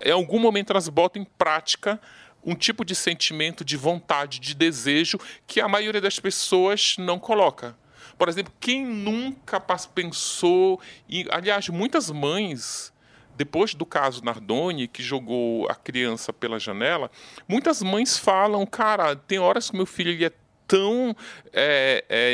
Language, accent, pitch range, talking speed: Portuguese, Brazilian, 140-205 Hz, 140 wpm